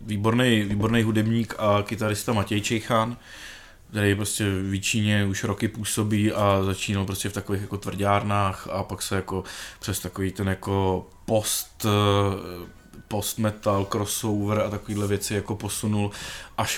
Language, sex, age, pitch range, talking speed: Czech, male, 20-39, 100-120 Hz, 130 wpm